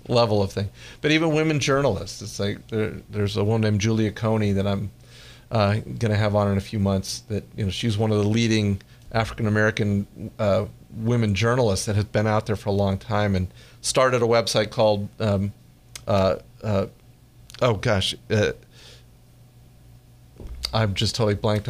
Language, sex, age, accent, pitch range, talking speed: English, male, 40-59, American, 105-120 Hz, 170 wpm